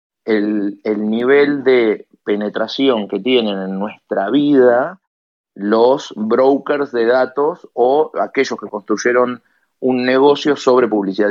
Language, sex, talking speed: Spanish, male, 115 wpm